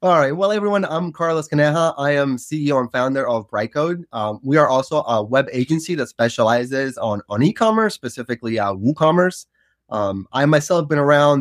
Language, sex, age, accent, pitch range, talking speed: English, male, 20-39, American, 120-165 Hz, 185 wpm